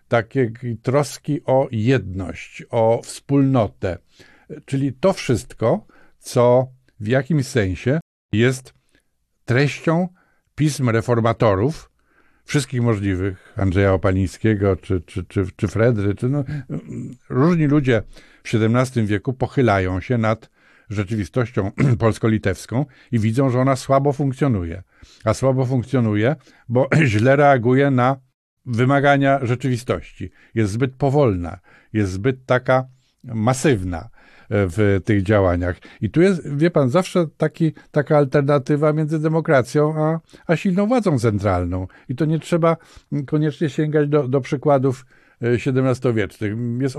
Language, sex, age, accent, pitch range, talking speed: Polish, male, 50-69, native, 110-145 Hz, 115 wpm